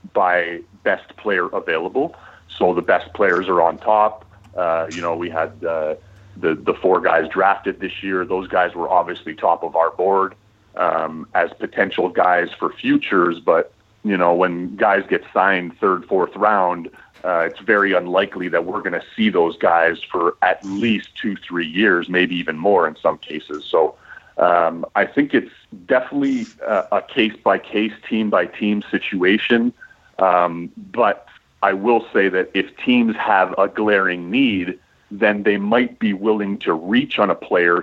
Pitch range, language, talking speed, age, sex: 90-115 Hz, English, 165 wpm, 30-49, male